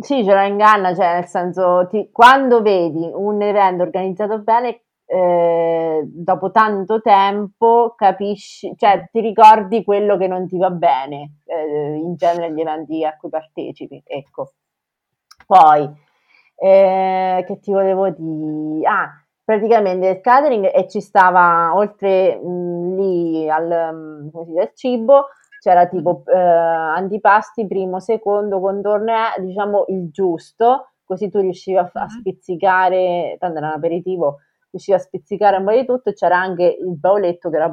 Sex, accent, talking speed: female, native, 140 wpm